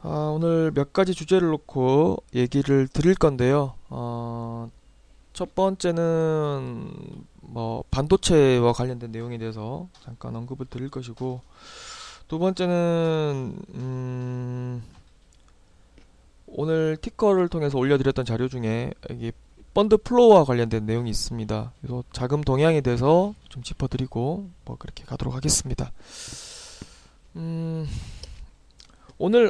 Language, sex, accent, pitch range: Korean, male, native, 120-170 Hz